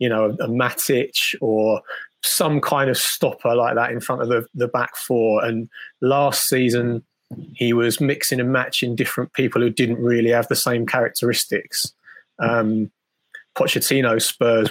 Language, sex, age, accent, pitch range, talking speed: English, male, 20-39, British, 110-125 Hz, 160 wpm